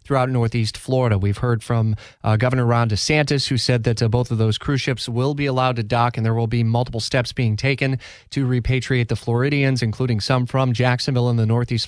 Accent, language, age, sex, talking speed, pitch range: American, English, 30-49, male, 215 wpm, 115-135 Hz